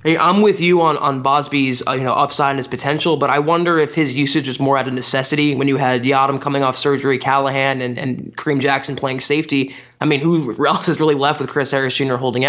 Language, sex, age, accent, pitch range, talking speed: English, male, 20-39, American, 135-165 Hz, 240 wpm